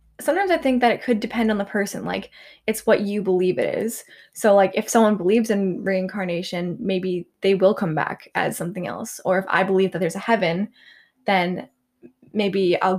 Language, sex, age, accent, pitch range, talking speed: English, female, 10-29, American, 180-220 Hz, 200 wpm